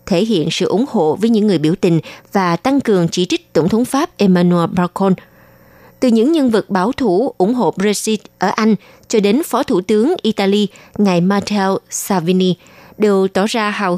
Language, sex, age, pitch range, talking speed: Vietnamese, female, 20-39, 175-225 Hz, 190 wpm